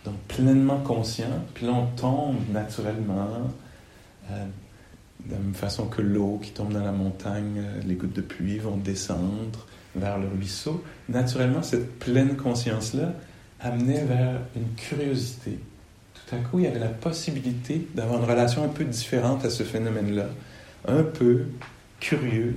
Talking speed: 150 wpm